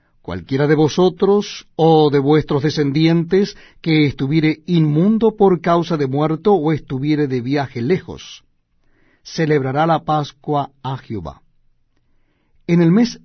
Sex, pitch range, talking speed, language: male, 130-165 Hz, 120 wpm, Spanish